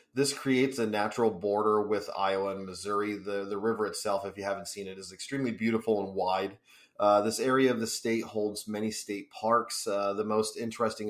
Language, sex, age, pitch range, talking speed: English, male, 30-49, 105-115 Hz, 200 wpm